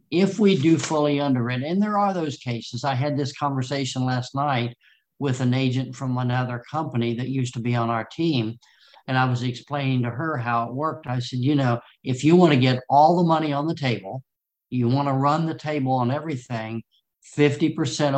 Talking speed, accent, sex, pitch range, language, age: 210 wpm, American, male, 125-145 Hz, English, 60-79